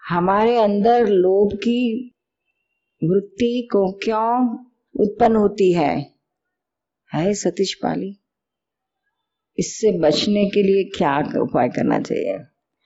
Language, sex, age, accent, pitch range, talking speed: Hindi, female, 50-69, native, 170-215 Hz, 105 wpm